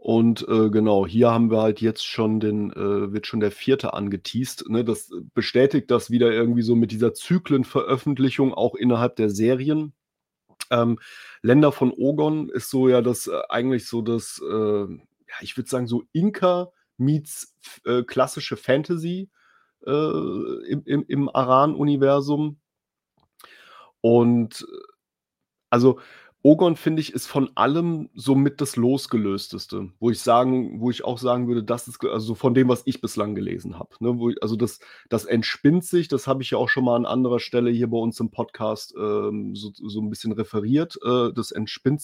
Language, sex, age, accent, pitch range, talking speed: German, male, 30-49, German, 115-140 Hz, 170 wpm